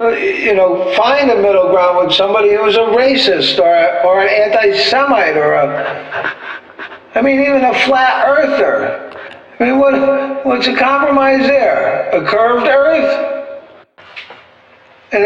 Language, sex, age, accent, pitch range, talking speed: English, male, 60-79, American, 170-225 Hz, 140 wpm